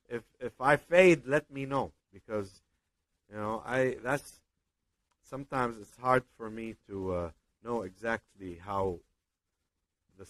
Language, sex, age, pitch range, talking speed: English, male, 50-69, 85-140 Hz, 135 wpm